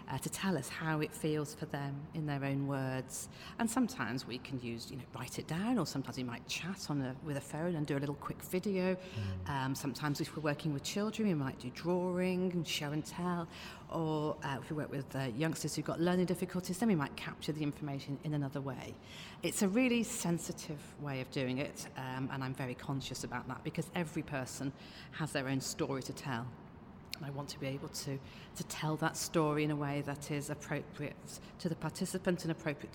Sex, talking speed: female, 220 wpm